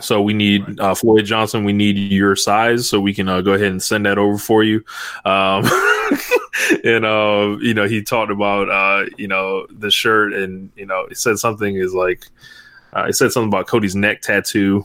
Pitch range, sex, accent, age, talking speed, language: 95-110 Hz, male, American, 20-39, 205 wpm, English